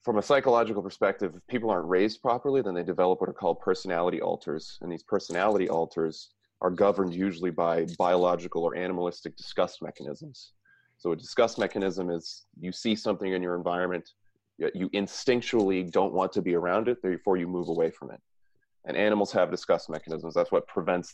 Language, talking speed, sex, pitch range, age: English, 180 wpm, male, 85-105 Hz, 30-49